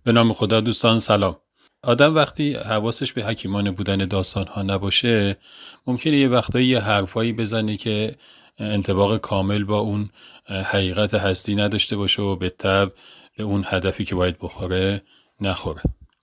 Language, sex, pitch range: Persian, male, 95-115 Hz